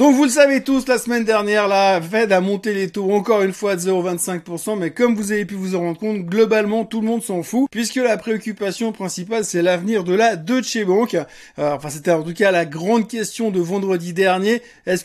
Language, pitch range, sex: French, 180-230 Hz, male